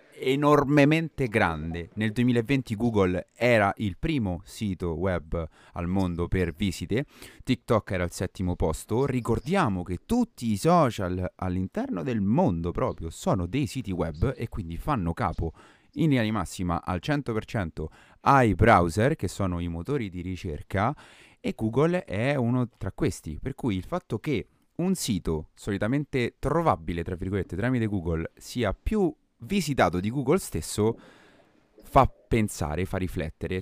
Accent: native